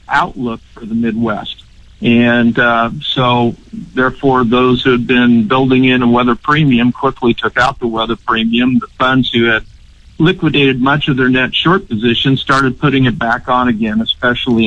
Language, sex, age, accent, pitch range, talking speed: English, male, 50-69, American, 120-145 Hz, 170 wpm